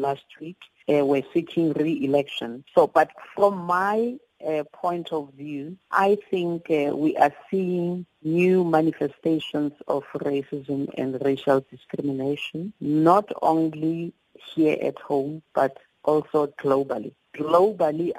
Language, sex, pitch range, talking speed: English, female, 135-160 Hz, 120 wpm